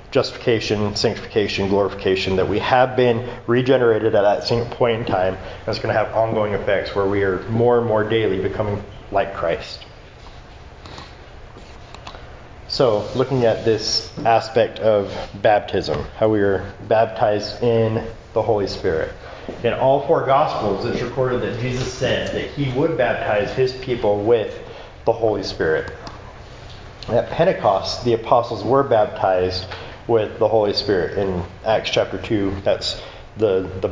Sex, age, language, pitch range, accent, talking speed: male, 30-49, English, 95-120 Hz, American, 145 wpm